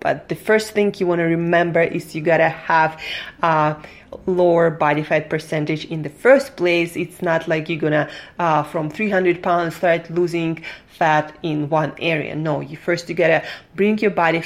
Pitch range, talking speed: 155-185 Hz, 200 wpm